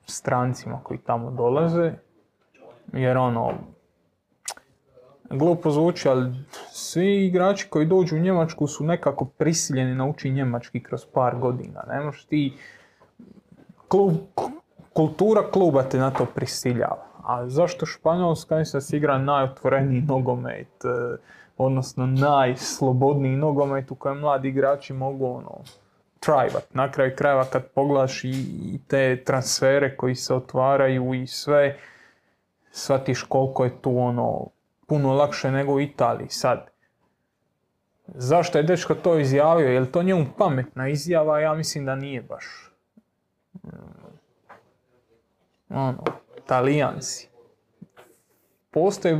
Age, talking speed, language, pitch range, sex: 20-39, 110 wpm, Croatian, 130-160 Hz, male